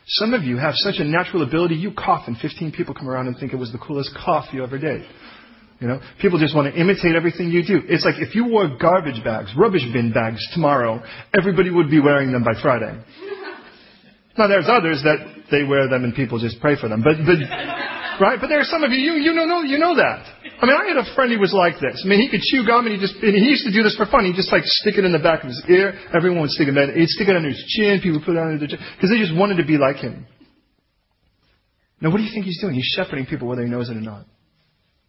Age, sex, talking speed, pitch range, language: 40-59, male, 270 wpm, 120-180 Hz, English